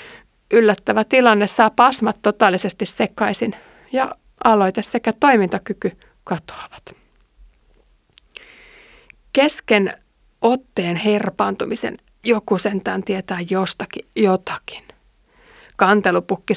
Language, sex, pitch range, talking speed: Finnish, female, 190-235 Hz, 70 wpm